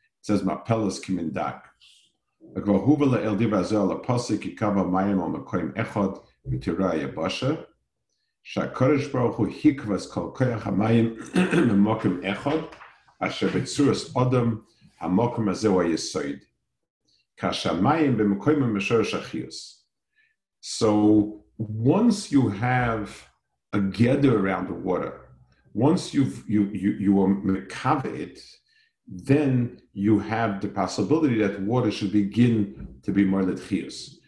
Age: 50-69